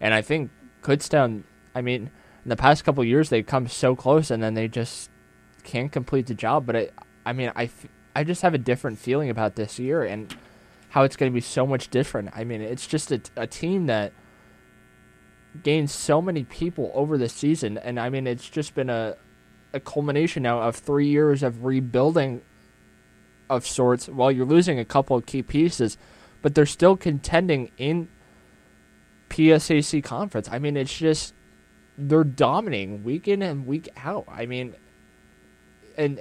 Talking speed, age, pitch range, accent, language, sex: 185 wpm, 20-39, 120-155 Hz, American, English, male